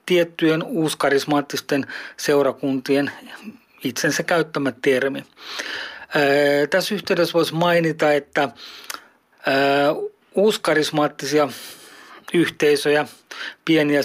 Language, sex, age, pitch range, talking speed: Finnish, male, 40-59, 140-165 Hz, 60 wpm